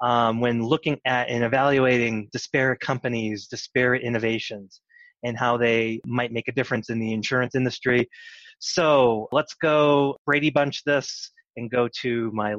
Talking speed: 150 wpm